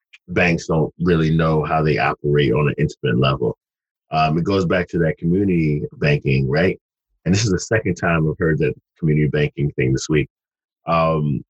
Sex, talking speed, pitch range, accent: male, 185 wpm, 75-90 Hz, American